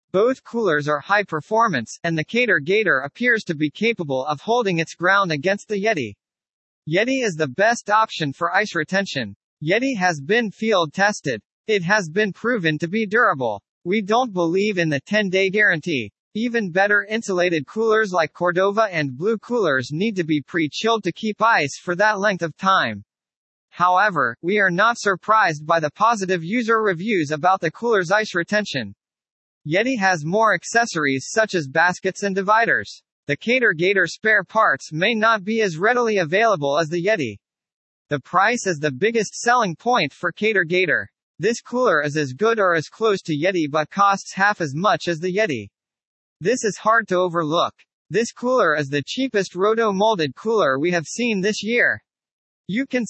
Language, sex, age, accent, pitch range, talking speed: English, male, 40-59, American, 165-220 Hz, 175 wpm